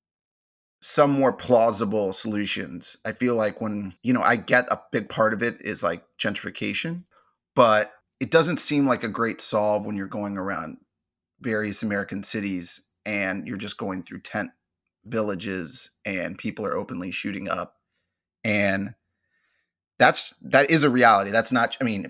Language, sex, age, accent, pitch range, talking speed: English, male, 30-49, American, 105-125 Hz, 160 wpm